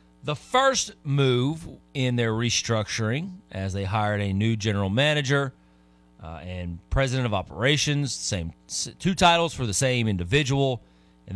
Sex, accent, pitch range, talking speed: male, American, 90-130 Hz, 135 wpm